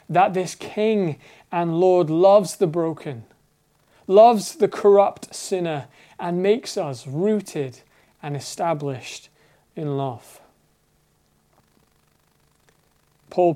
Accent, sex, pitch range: British, male, 145-190 Hz